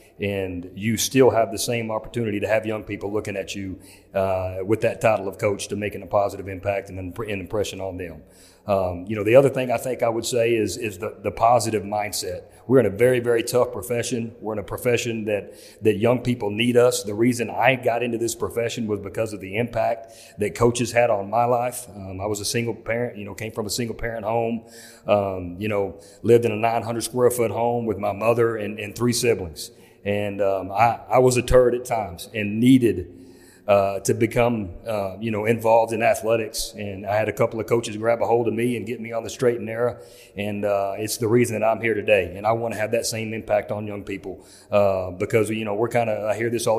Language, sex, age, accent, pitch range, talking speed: English, male, 40-59, American, 100-115 Hz, 235 wpm